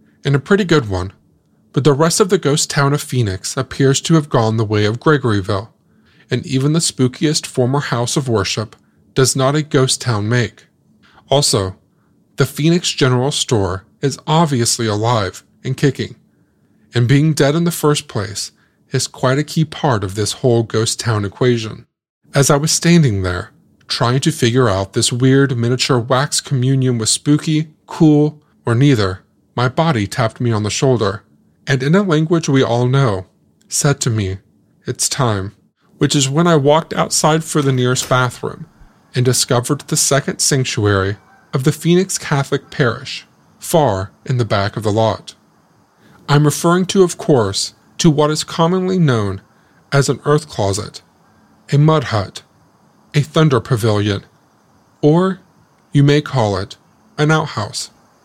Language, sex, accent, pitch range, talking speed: English, male, American, 110-150 Hz, 160 wpm